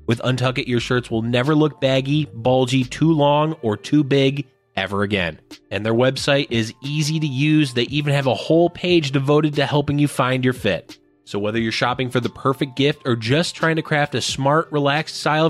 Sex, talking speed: male, 210 wpm